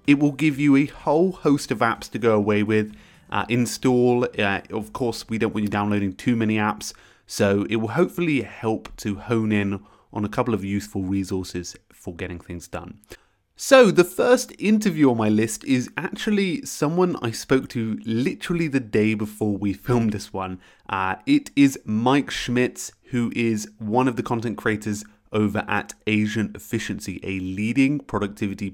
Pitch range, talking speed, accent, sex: 100-135 Hz, 175 wpm, British, male